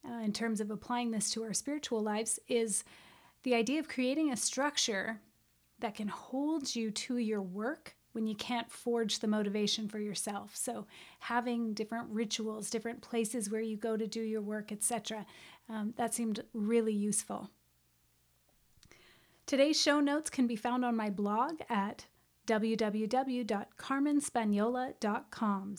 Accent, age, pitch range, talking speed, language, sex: American, 30-49, 215-245 Hz, 140 wpm, English, female